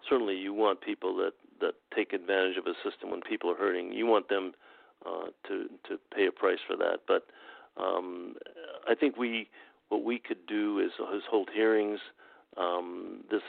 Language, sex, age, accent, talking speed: English, male, 50-69, American, 180 wpm